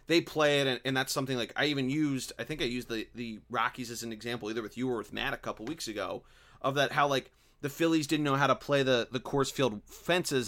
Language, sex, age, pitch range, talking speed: English, male, 30-49, 115-145 Hz, 275 wpm